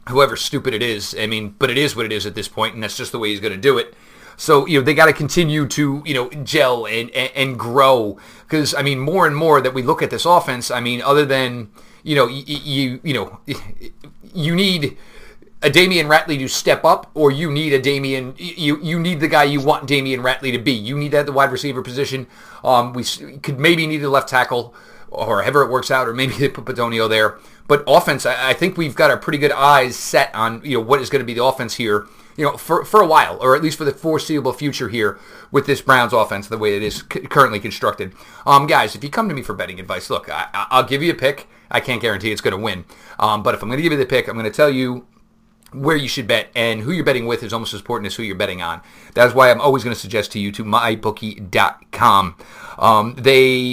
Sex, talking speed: male, 250 wpm